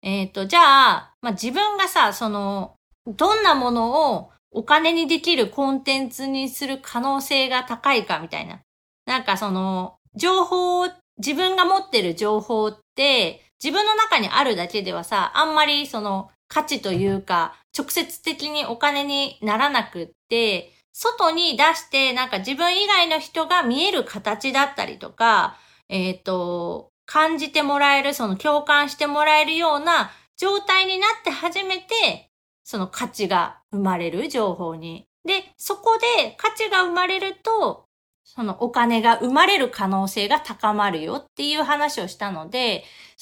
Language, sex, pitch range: Japanese, female, 215-330 Hz